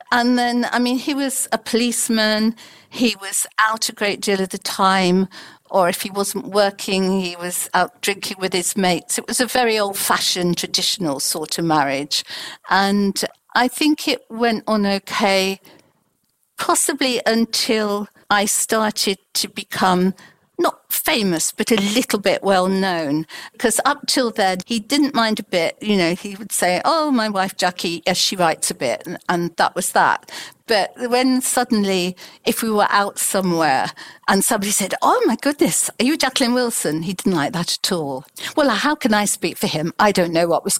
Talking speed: 180 wpm